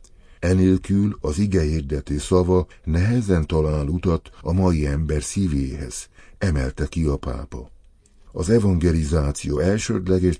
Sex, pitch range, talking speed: male, 75-95 Hz, 105 wpm